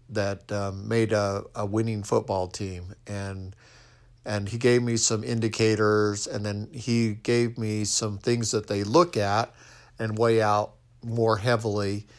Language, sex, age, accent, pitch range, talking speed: English, male, 50-69, American, 105-115 Hz, 155 wpm